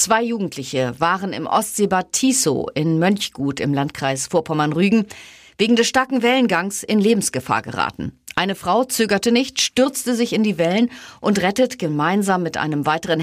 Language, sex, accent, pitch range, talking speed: German, female, German, 160-220 Hz, 150 wpm